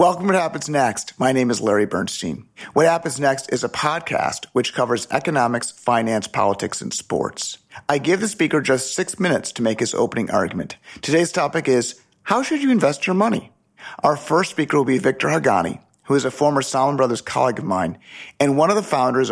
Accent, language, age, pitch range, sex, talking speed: American, English, 40-59, 120-150 Hz, male, 200 wpm